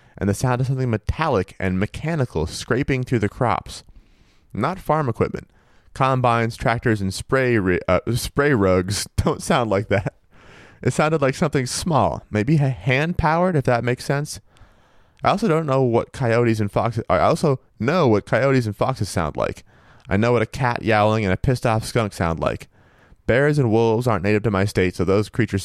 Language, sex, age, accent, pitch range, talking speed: English, male, 30-49, American, 95-125 Hz, 180 wpm